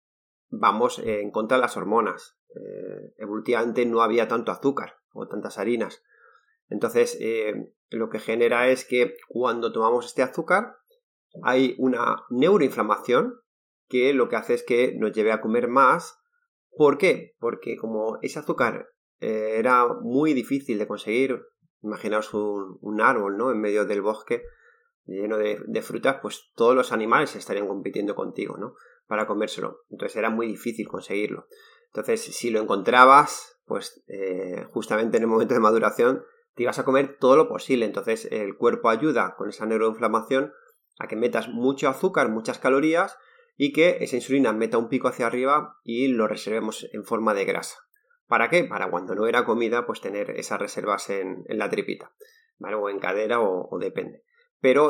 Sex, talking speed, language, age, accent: male, 165 wpm, Spanish, 30-49, Spanish